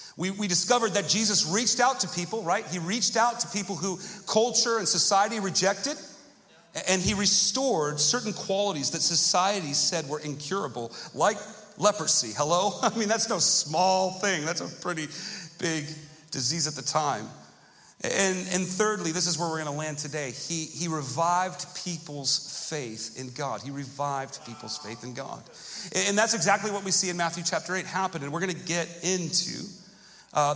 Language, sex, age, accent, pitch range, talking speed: English, male, 40-59, American, 155-200 Hz, 175 wpm